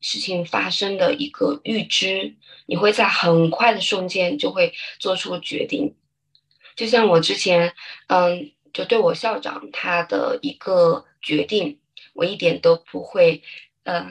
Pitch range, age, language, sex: 170-245 Hz, 20-39, Chinese, female